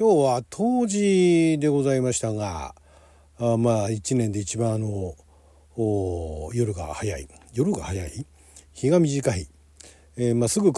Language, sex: Japanese, male